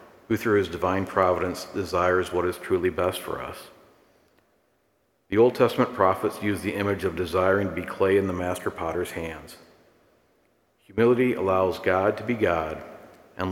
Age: 50-69